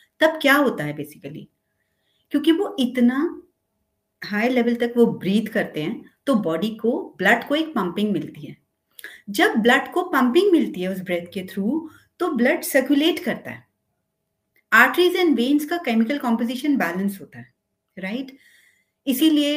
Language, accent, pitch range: Hindi, native, 205-300 Hz